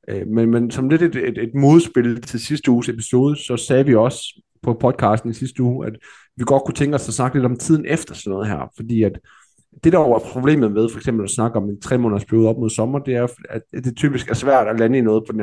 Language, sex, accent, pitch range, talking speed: Danish, male, native, 110-135 Hz, 260 wpm